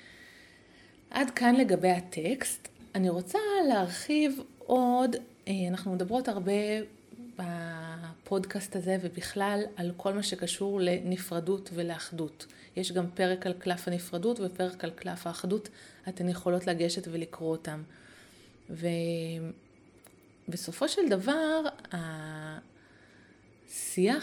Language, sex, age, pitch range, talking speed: Hebrew, female, 30-49, 175-210 Hz, 95 wpm